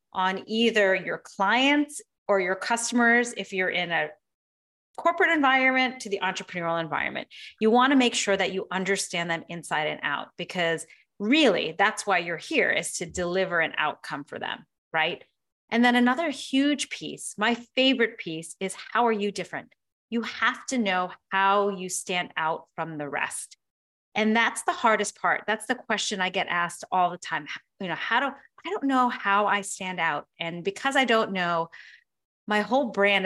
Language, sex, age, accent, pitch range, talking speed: English, female, 30-49, American, 185-240 Hz, 180 wpm